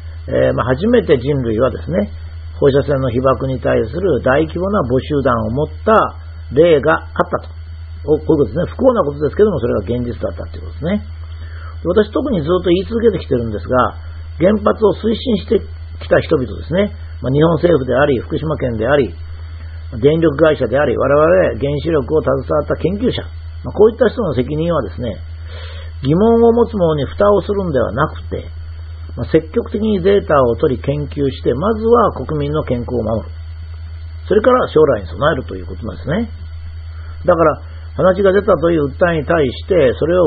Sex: male